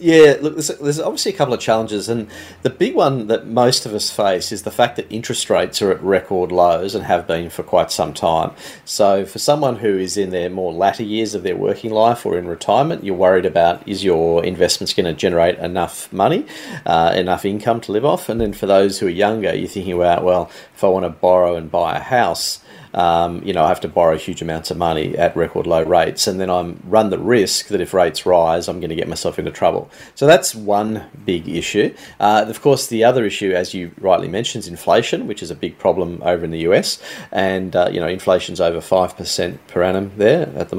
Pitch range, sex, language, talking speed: 90-115 Hz, male, English, 230 wpm